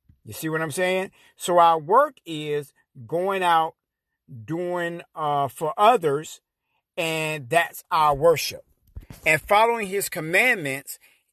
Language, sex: English, male